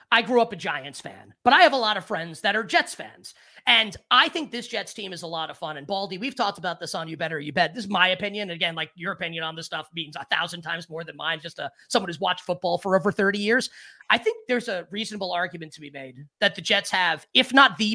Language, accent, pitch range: English, American, 175-235 Hz